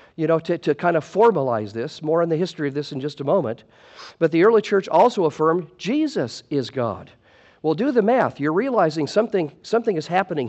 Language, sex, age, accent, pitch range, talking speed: English, male, 50-69, American, 145-195 Hz, 210 wpm